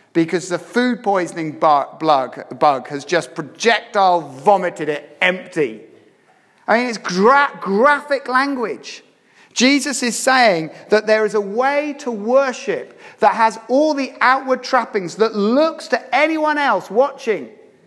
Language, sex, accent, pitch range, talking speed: English, male, British, 175-260 Hz, 130 wpm